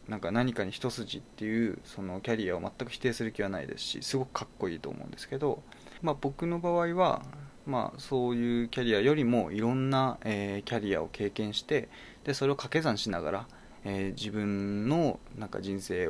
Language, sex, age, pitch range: Japanese, male, 20-39, 105-150 Hz